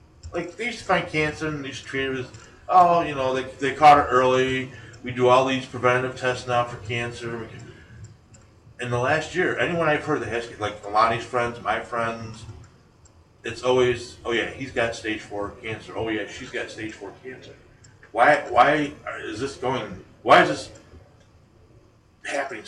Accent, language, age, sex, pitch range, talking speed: American, English, 30-49, male, 105-130 Hz, 185 wpm